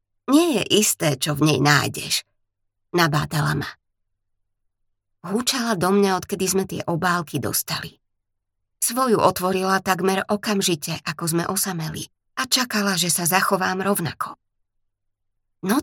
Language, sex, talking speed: Slovak, female, 120 wpm